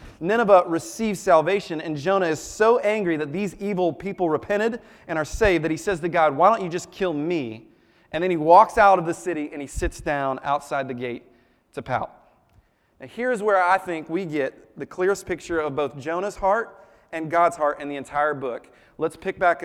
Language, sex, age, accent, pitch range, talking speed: English, male, 30-49, American, 145-185 Hz, 210 wpm